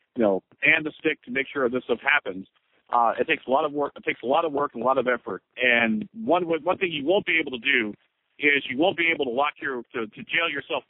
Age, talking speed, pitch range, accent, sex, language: 50-69, 280 wpm, 125-155 Hz, American, male, English